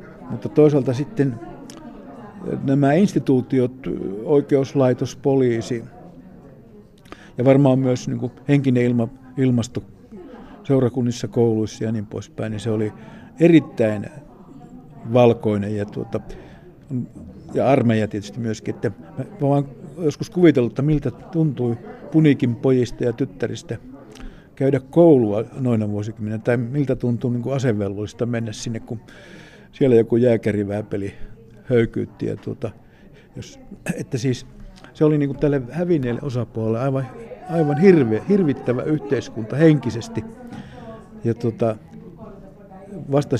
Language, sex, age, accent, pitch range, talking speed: Finnish, male, 60-79, native, 115-140 Hz, 110 wpm